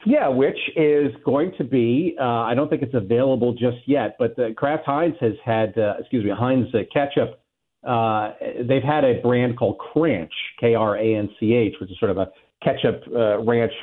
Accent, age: American, 50-69